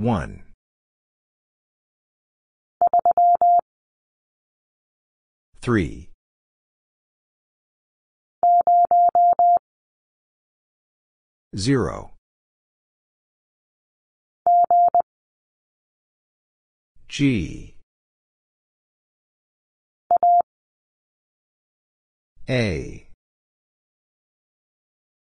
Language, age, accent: English, 40-59, American